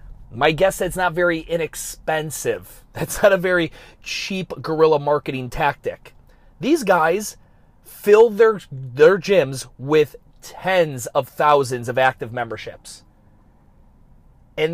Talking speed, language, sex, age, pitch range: 115 wpm, English, male, 30-49, 125-175 Hz